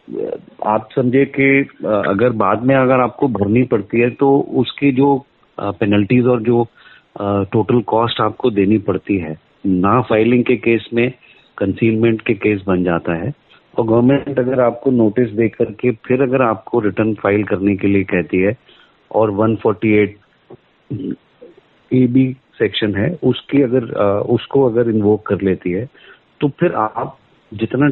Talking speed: 155 wpm